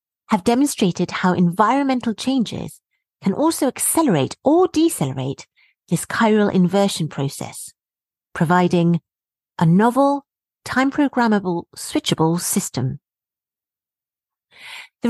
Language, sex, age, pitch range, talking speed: English, female, 40-59, 160-235 Hz, 85 wpm